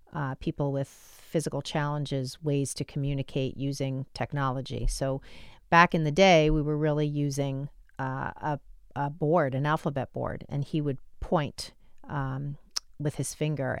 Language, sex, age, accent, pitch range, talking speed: English, female, 40-59, American, 140-165 Hz, 150 wpm